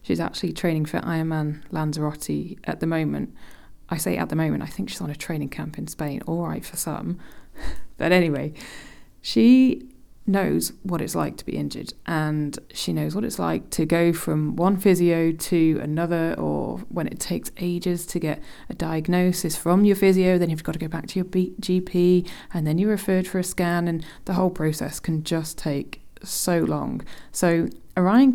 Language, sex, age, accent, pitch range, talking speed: English, female, 20-39, British, 155-185 Hz, 190 wpm